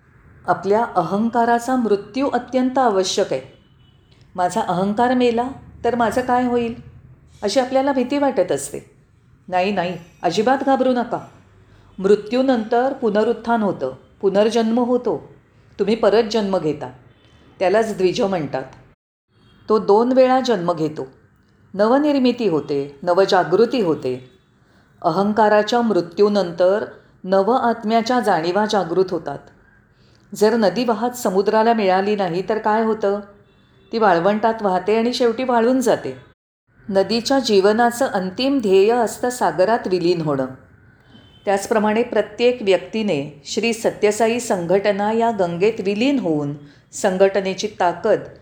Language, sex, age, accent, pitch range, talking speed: Marathi, female, 40-59, native, 170-235 Hz, 105 wpm